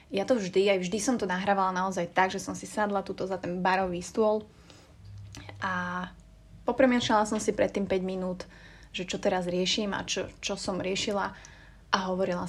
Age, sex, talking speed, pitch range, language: 20-39, female, 185 wpm, 190-225 Hz, Slovak